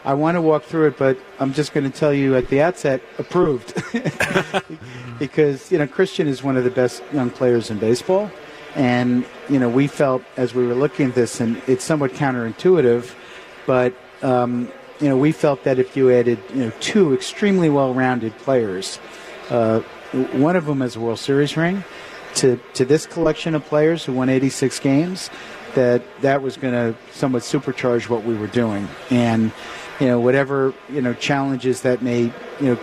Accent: American